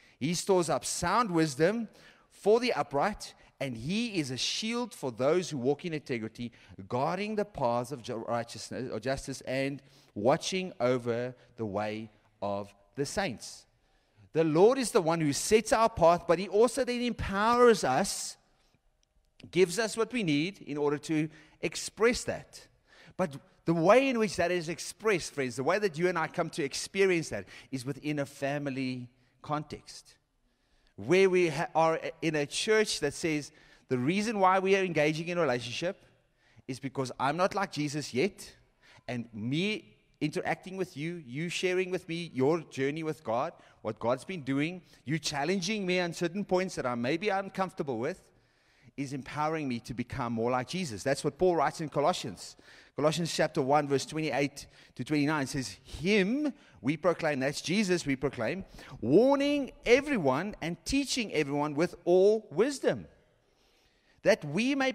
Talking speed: 165 wpm